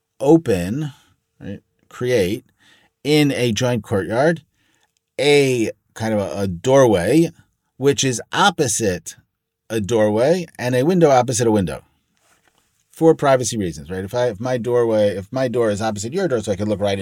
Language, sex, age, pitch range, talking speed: English, male, 30-49, 105-145 Hz, 160 wpm